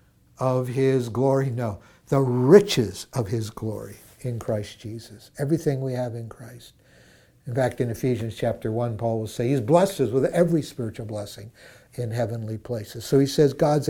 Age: 60-79